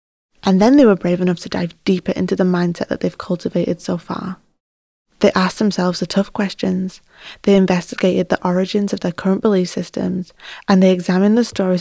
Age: 20-39